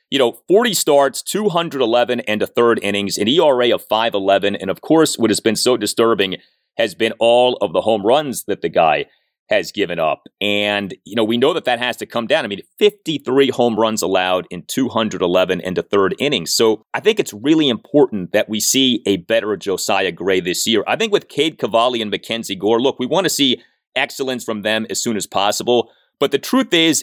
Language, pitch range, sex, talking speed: English, 105-170 Hz, male, 215 wpm